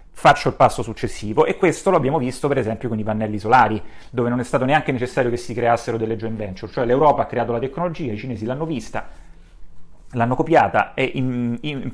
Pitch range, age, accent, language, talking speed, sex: 105-125 Hz, 30-49, native, Italian, 205 wpm, male